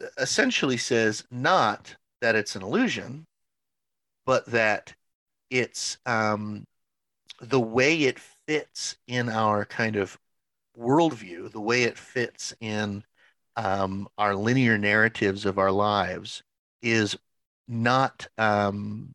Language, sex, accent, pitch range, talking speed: English, male, American, 100-120 Hz, 110 wpm